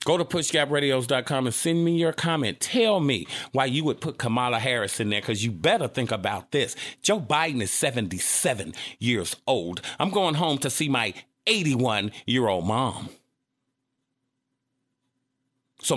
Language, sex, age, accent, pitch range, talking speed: English, male, 40-59, American, 130-165 Hz, 155 wpm